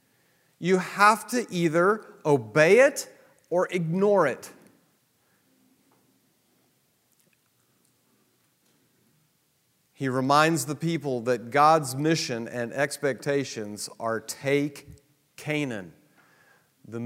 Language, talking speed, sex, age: English, 75 wpm, male, 40-59